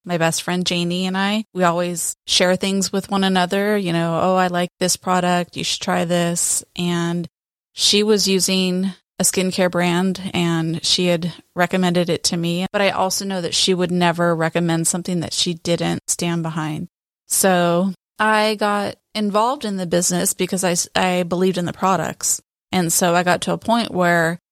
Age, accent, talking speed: 20-39, American, 185 wpm